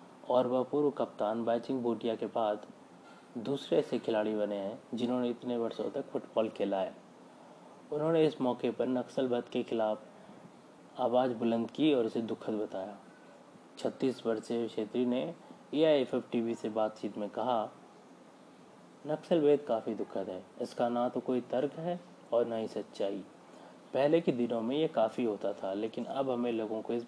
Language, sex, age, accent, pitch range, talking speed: Hindi, male, 20-39, native, 110-130 Hz, 160 wpm